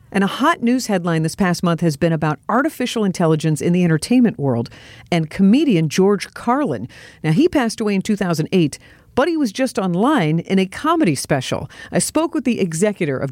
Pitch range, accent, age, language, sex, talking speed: 160-230 Hz, American, 50-69, English, female, 190 wpm